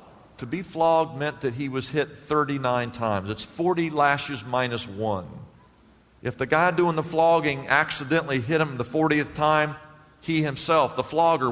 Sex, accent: male, American